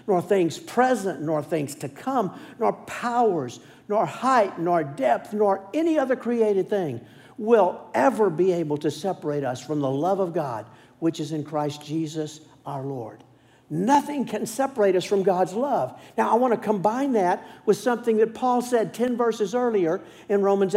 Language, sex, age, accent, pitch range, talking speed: English, male, 60-79, American, 160-245 Hz, 175 wpm